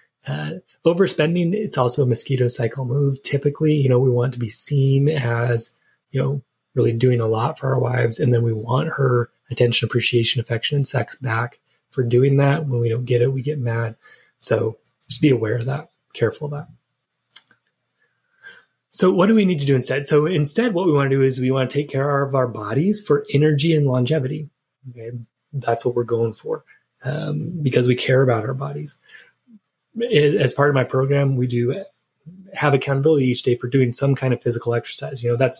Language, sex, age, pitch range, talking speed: English, male, 20-39, 120-145 Hz, 200 wpm